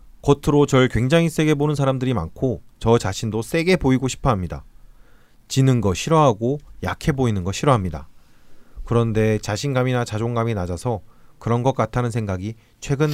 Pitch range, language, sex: 110-145 Hz, Korean, male